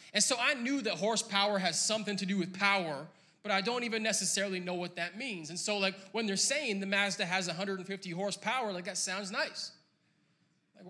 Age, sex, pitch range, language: 20-39, male, 170-215 Hz, English